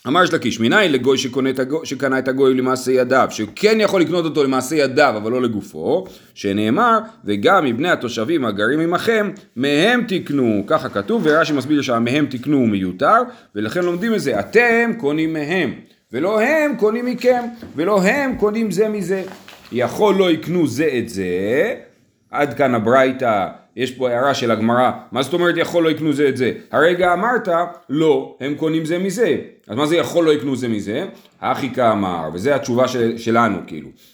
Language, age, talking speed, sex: Hebrew, 40-59, 175 wpm, male